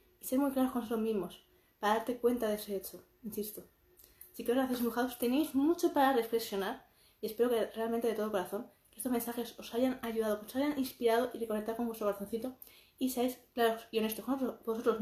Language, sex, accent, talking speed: Spanish, female, Spanish, 210 wpm